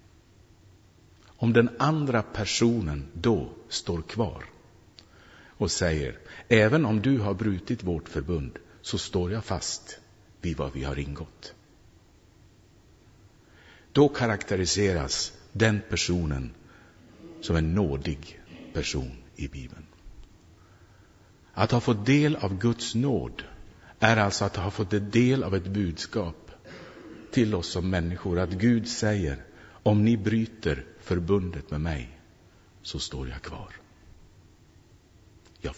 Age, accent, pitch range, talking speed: 60-79, Norwegian, 85-110 Hz, 115 wpm